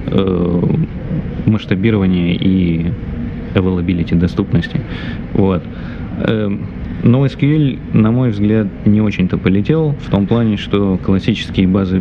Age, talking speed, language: 20-39, 95 wpm, Russian